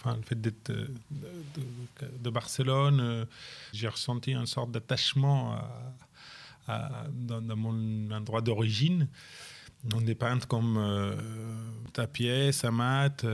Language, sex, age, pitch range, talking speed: French, male, 20-39, 110-130 Hz, 135 wpm